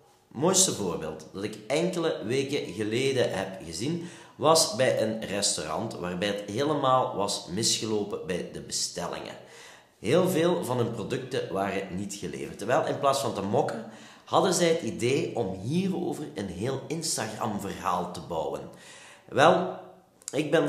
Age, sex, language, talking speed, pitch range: 40-59, male, Dutch, 145 wpm, 105-160 Hz